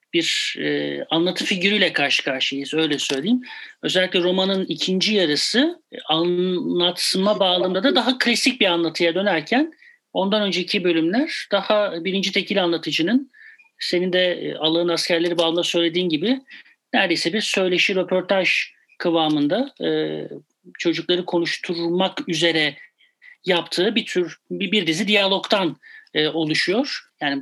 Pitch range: 160-195 Hz